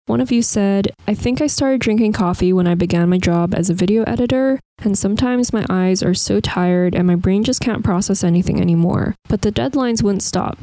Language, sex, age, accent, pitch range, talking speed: English, female, 10-29, American, 180-220 Hz, 220 wpm